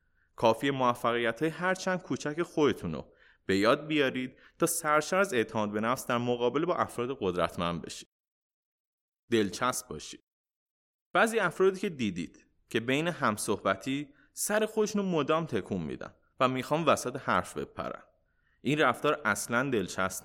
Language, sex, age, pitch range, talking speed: Persian, male, 30-49, 110-155 Hz, 130 wpm